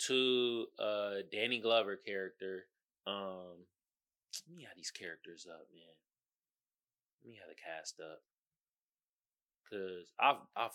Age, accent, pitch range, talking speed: 20-39, American, 130-220 Hz, 125 wpm